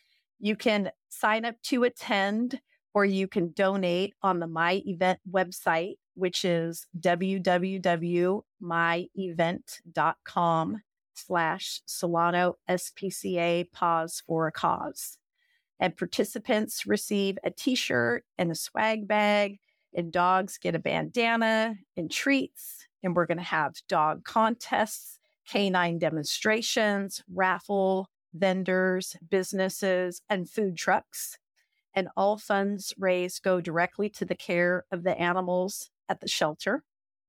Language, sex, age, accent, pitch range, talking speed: English, female, 40-59, American, 175-205 Hz, 115 wpm